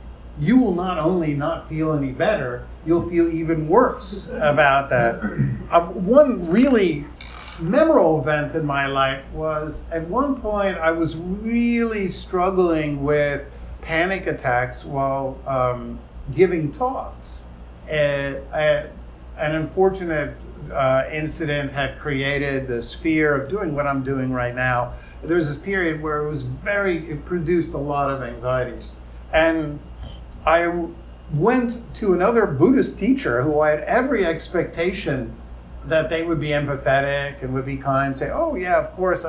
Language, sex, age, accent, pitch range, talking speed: English, male, 50-69, American, 130-180 Hz, 140 wpm